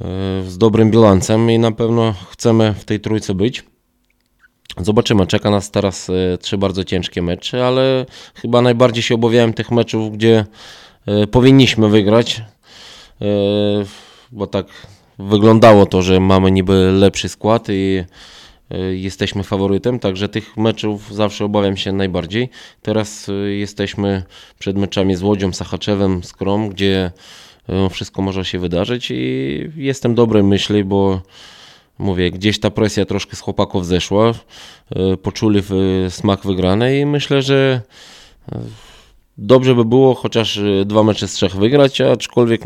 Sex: male